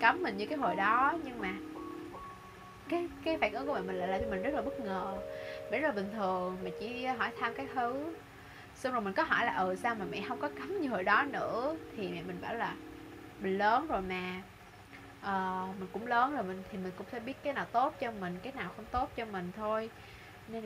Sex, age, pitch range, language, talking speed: female, 20-39, 180-245 Hz, Vietnamese, 245 wpm